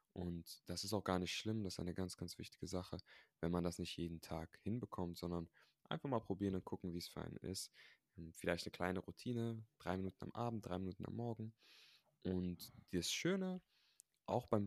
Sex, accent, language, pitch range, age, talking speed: male, German, German, 90-105 Hz, 20-39, 200 wpm